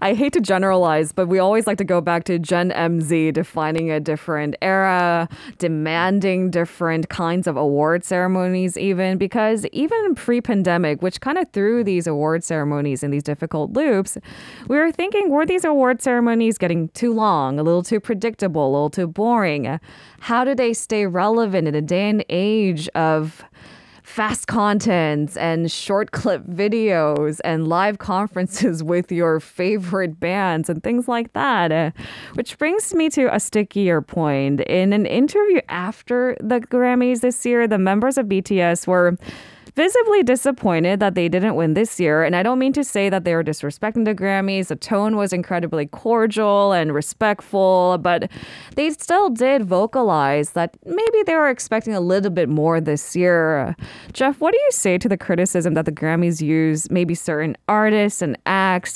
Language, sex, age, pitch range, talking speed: English, female, 20-39, 165-225 Hz, 170 wpm